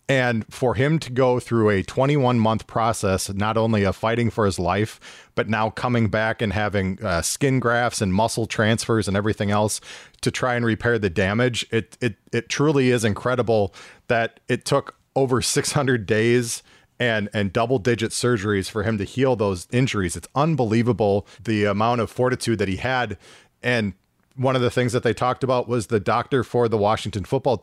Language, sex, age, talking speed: English, male, 40-59, 180 wpm